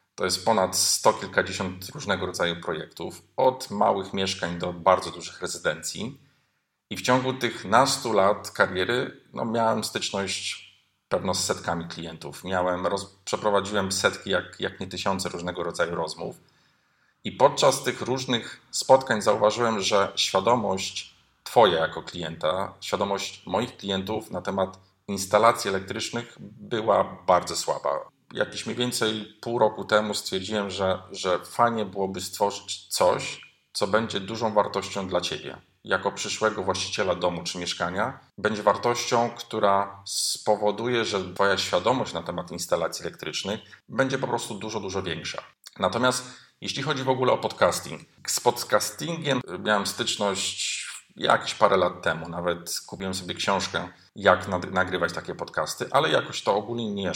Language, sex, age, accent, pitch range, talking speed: Polish, male, 40-59, native, 95-115 Hz, 135 wpm